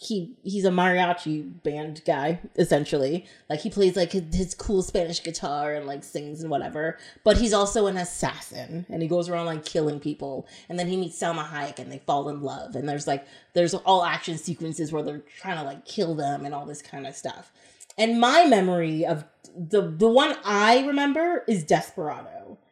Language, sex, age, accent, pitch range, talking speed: English, female, 30-49, American, 165-240 Hz, 200 wpm